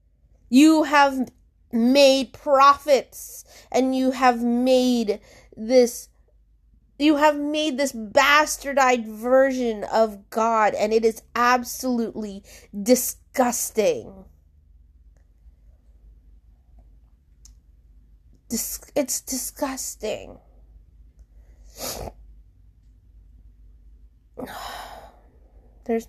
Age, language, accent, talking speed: 20-39, English, American, 55 wpm